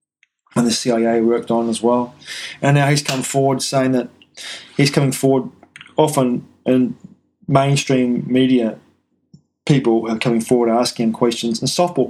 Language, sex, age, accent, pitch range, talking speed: English, male, 20-39, Australian, 115-135 Hz, 140 wpm